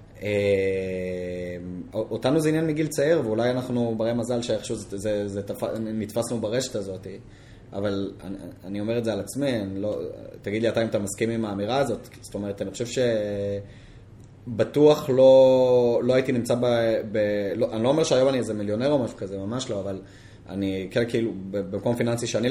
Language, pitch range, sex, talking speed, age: Hebrew, 100-120 Hz, male, 155 wpm, 20-39